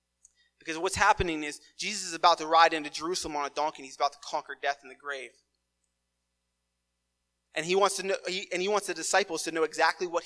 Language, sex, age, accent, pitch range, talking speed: English, male, 30-49, American, 135-180 Hz, 215 wpm